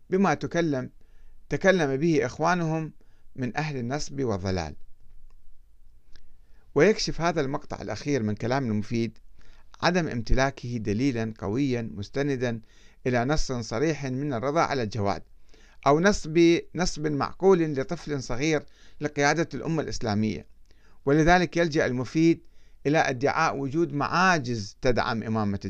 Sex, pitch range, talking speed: male, 110-165 Hz, 105 wpm